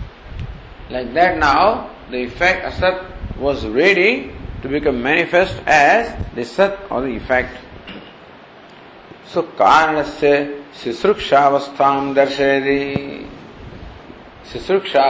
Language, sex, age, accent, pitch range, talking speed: English, male, 50-69, Indian, 135-190 Hz, 90 wpm